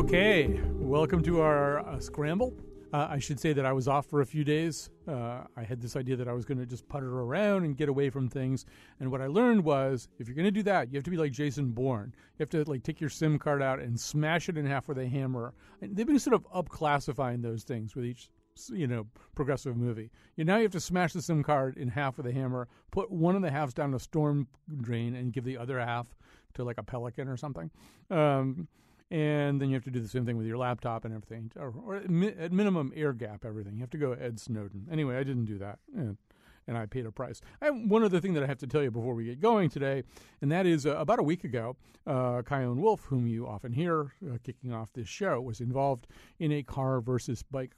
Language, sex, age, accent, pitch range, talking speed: English, male, 40-59, American, 120-155 Hz, 255 wpm